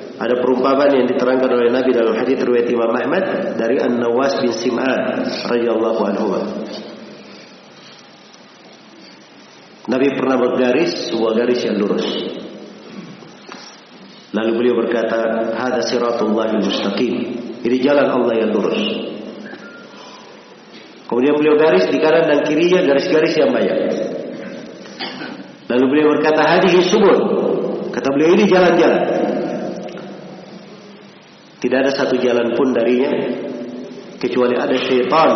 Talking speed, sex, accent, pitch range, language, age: 105 wpm, male, native, 120-165 Hz, Indonesian, 50-69